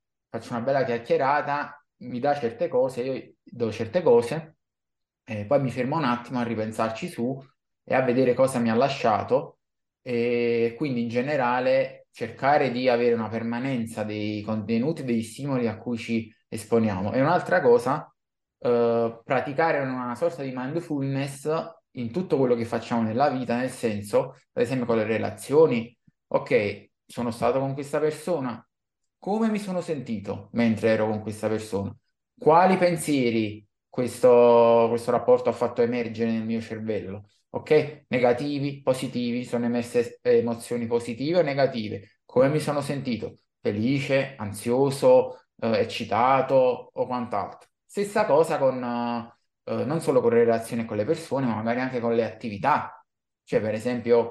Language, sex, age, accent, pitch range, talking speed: Italian, male, 20-39, native, 115-145 Hz, 150 wpm